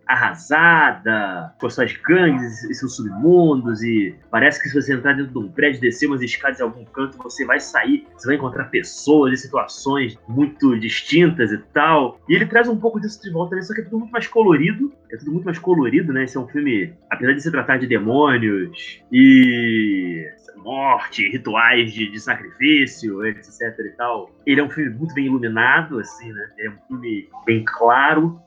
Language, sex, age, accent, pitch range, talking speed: Portuguese, male, 30-49, Brazilian, 130-205 Hz, 200 wpm